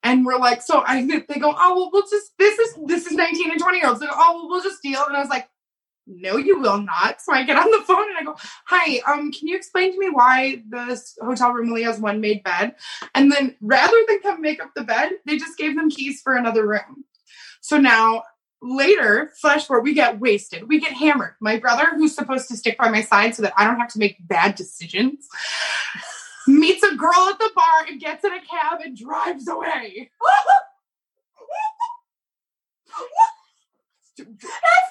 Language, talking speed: English, 210 wpm